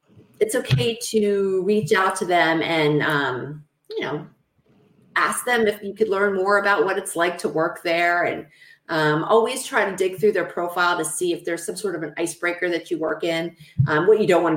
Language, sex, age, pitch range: English, female, 30-49, 160-200 Hz